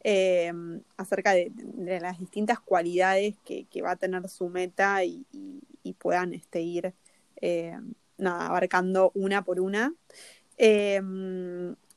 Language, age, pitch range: Spanish, 20-39, 180-220 Hz